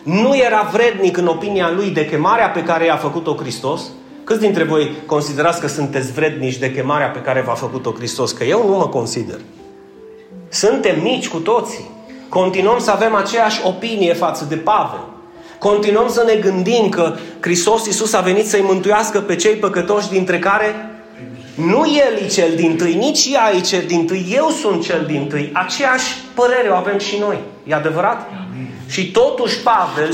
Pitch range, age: 165-230 Hz, 30-49